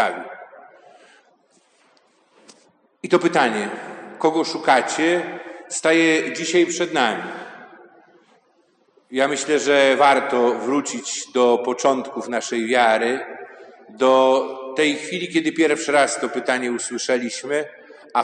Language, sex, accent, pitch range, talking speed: Polish, male, native, 140-175 Hz, 90 wpm